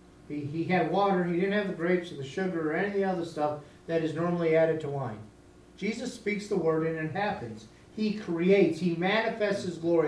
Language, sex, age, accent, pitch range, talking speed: English, male, 40-59, American, 155-190 Hz, 220 wpm